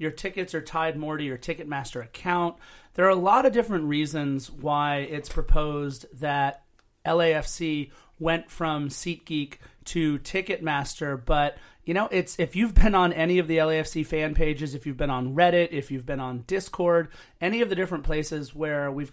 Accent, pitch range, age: American, 150-175 Hz, 30-49